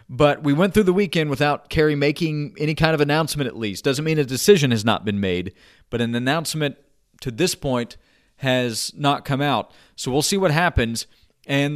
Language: English